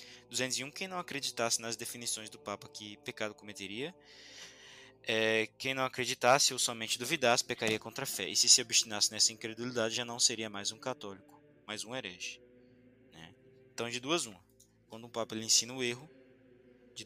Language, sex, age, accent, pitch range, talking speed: Portuguese, male, 20-39, Brazilian, 110-125 Hz, 175 wpm